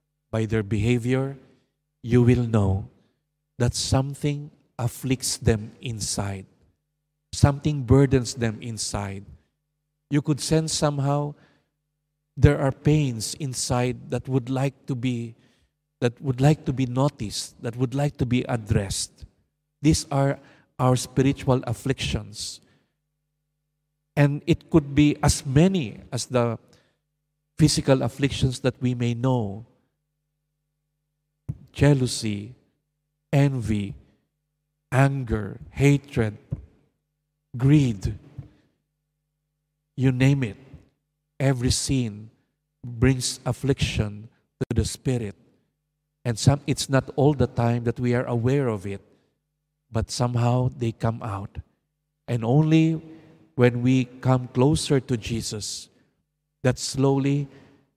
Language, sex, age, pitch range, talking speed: Indonesian, male, 50-69, 120-150 Hz, 105 wpm